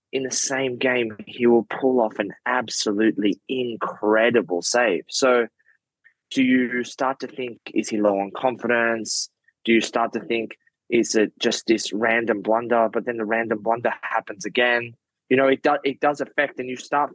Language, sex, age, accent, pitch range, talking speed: English, male, 20-39, Australian, 110-130 Hz, 180 wpm